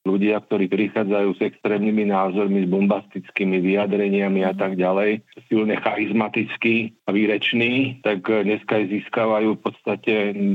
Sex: male